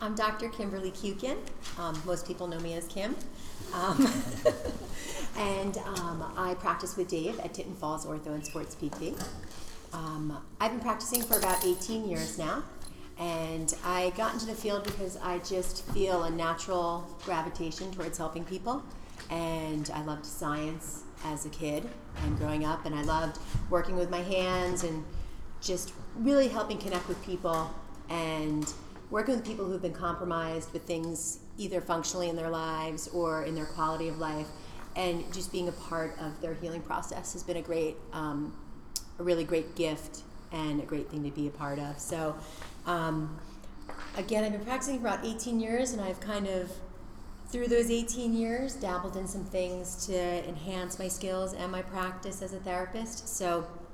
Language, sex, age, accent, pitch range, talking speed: English, female, 30-49, American, 160-190 Hz, 170 wpm